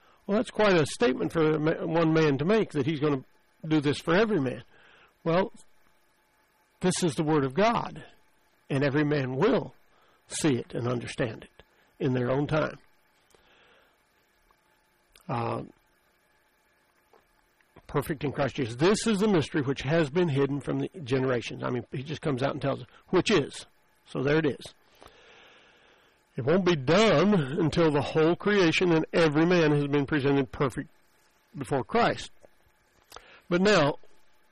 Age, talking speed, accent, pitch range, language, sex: 60-79, 155 wpm, American, 135-175 Hz, English, male